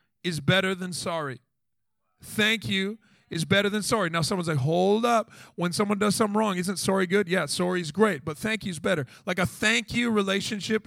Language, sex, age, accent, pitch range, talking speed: English, male, 40-59, American, 165-220 Hz, 205 wpm